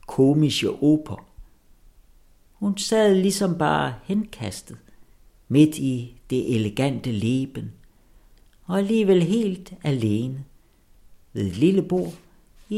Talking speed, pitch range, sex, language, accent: 100 wpm, 100-170 Hz, male, Danish, native